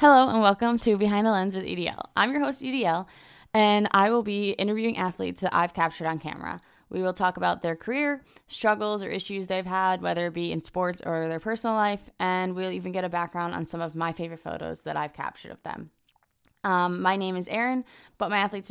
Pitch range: 160-190 Hz